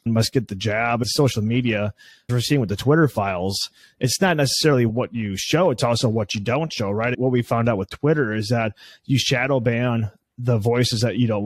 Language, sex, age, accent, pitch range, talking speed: English, male, 30-49, American, 110-140 Hz, 220 wpm